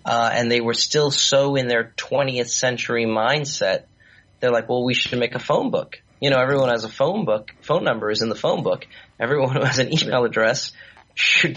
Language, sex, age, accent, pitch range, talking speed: English, male, 30-49, American, 115-140 Hz, 215 wpm